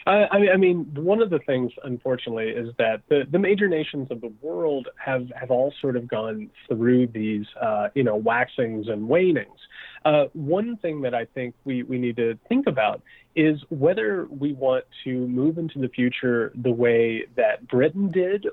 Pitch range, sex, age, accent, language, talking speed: 120-150 Hz, male, 30-49, American, English, 185 wpm